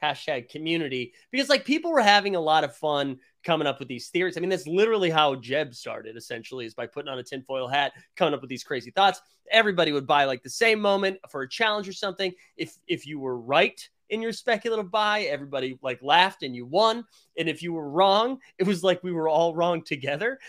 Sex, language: male, English